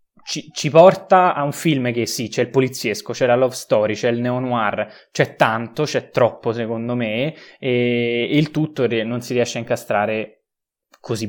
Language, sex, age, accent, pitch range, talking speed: Italian, male, 20-39, native, 115-140 Hz, 185 wpm